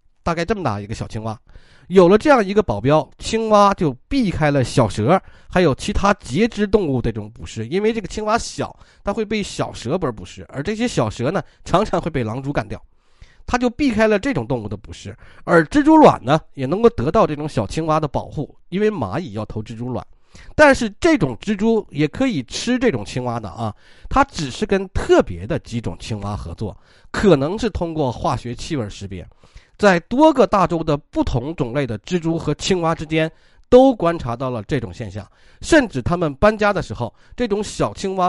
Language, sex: Chinese, male